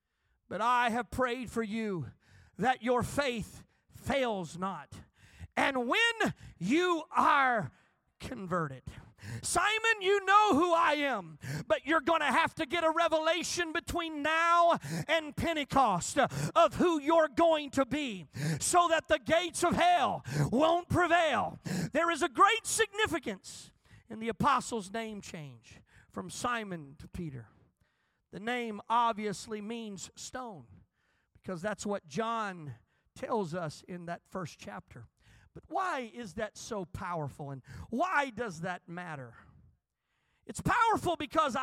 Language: English